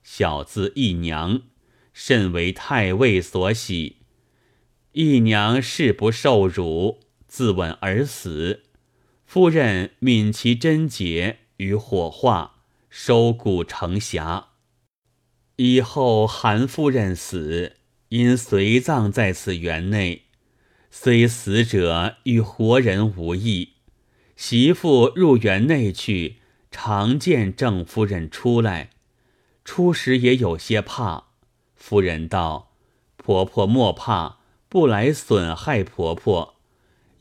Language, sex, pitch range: Chinese, male, 95-125 Hz